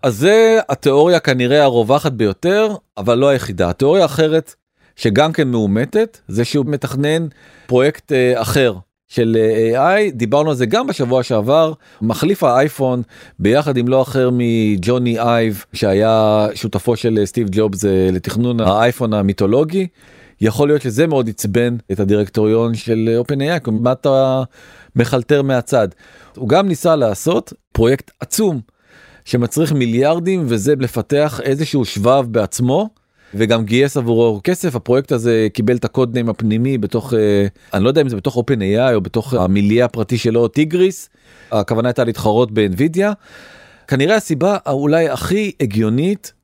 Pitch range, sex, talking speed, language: 115-145 Hz, male, 135 wpm, Hebrew